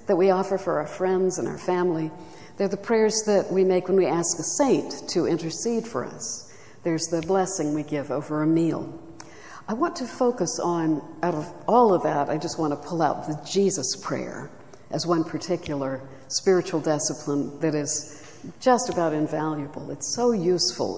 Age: 60-79